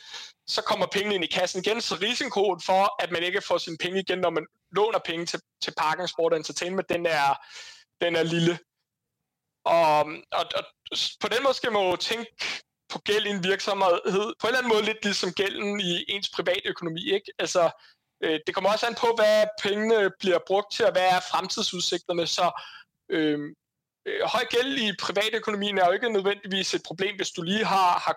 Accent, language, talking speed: native, Danish, 195 wpm